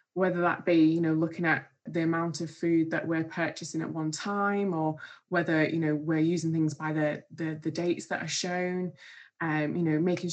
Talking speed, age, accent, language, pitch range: 210 wpm, 20-39, British, English, 160-185 Hz